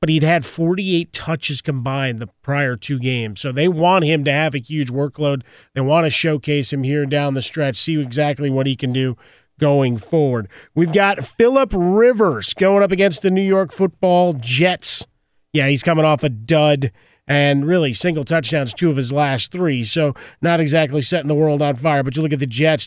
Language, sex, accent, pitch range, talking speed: English, male, American, 145-170 Hz, 200 wpm